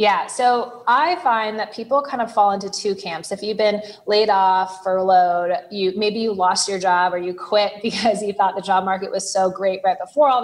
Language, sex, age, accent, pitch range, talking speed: English, female, 20-39, American, 185-230 Hz, 225 wpm